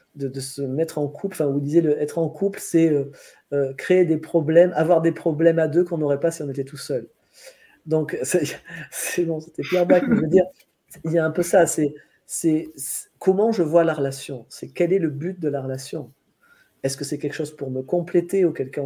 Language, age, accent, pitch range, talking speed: French, 50-69, French, 140-175 Hz, 225 wpm